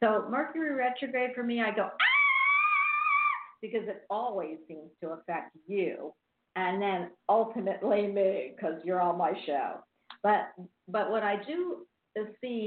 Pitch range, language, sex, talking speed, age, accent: 170-230 Hz, English, female, 140 wpm, 50-69, American